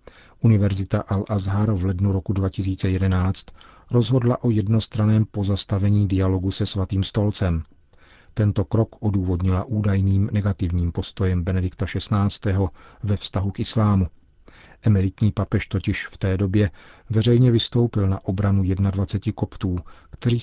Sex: male